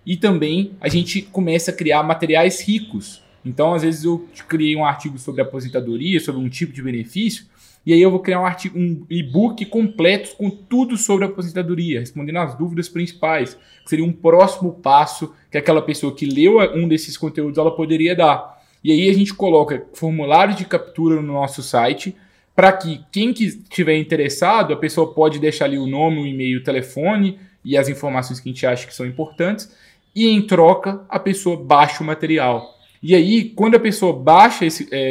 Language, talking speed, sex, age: English, 190 wpm, male, 20-39